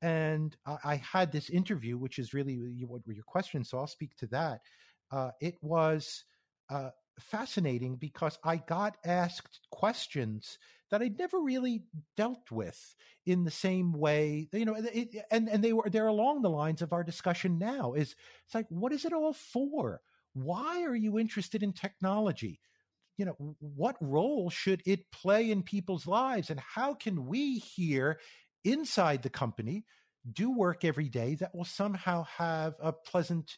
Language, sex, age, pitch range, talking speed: English, male, 50-69, 150-210 Hz, 170 wpm